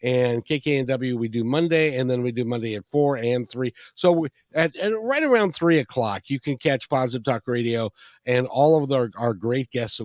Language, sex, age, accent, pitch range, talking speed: English, male, 50-69, American, 115-165 Hz, 215 wpm